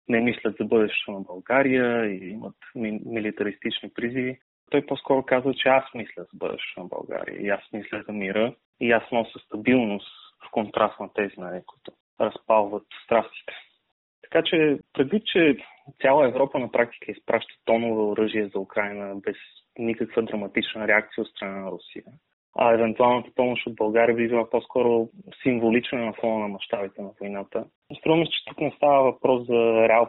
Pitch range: 110-130 Hz